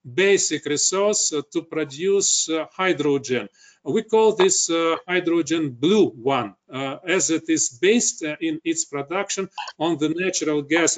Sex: male